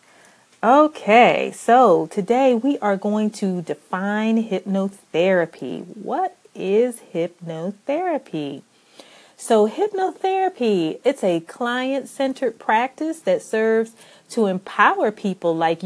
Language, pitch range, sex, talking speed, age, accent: English, 185-240 Hz, female, 90 wpm, 30-49, American